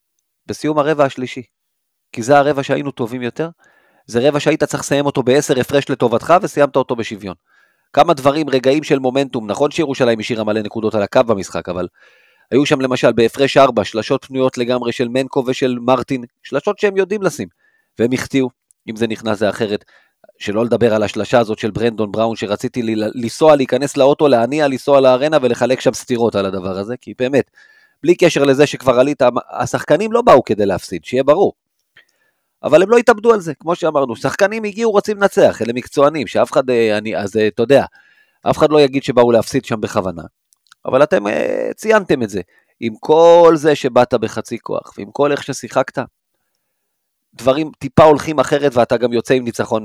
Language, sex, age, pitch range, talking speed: Hebrew, male, 30-49, 115-150 Hz, 170 wpm